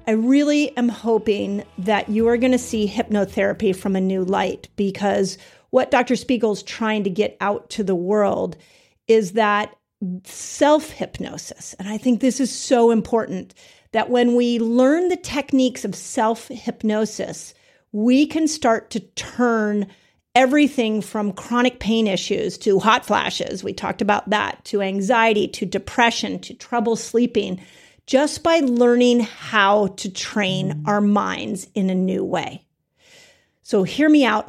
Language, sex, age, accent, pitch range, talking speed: English, female, 40-59, American, 200-245 Hz, 150 wpm